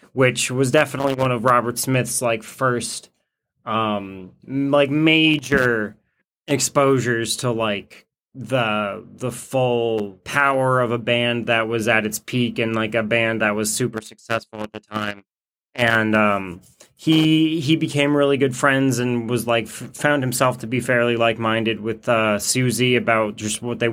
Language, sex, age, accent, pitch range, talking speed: English, male, 20-39, American, 110-130 Hz, 160 wpm